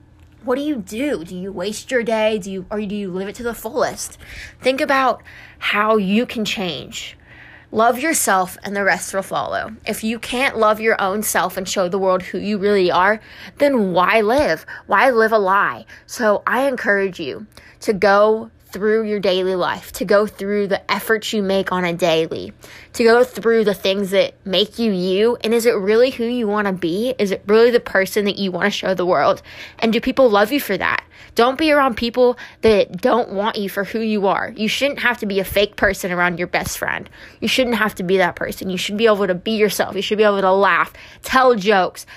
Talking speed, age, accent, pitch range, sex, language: 225 wpm, 20-39, American, 195-235 Hz, female, English